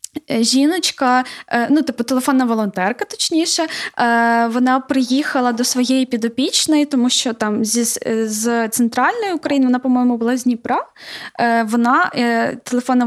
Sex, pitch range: female, 235-275 Hz